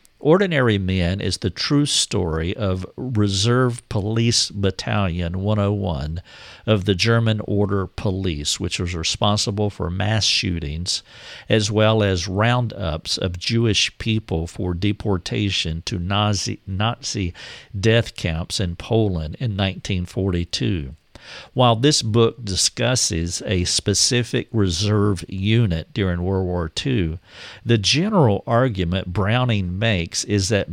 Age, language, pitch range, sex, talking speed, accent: 50-69, English, 90-110 Hz, male, 115 wpm, American